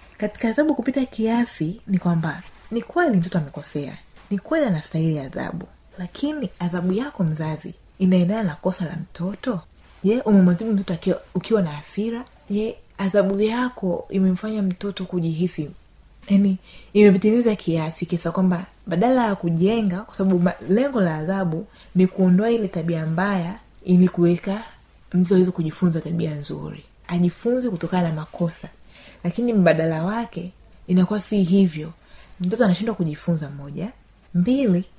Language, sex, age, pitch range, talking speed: Swahili, female, 30-49, 170-205 Hz, 130 wpm